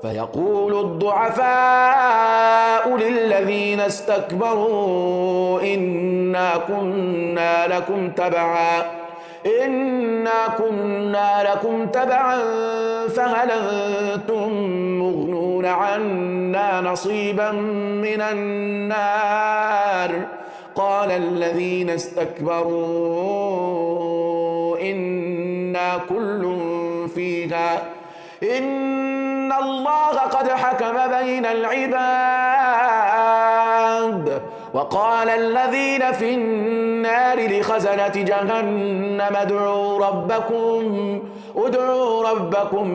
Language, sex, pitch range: Finnish, male, 180-230 Hz